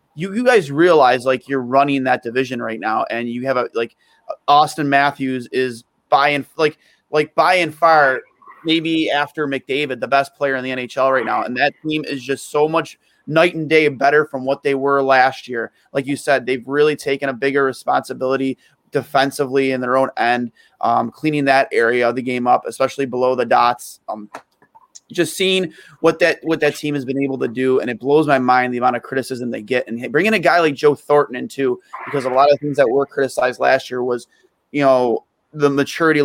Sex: male